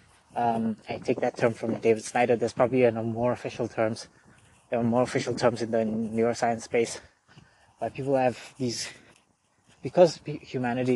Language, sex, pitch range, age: English, male, 115-130 Hz, 20-39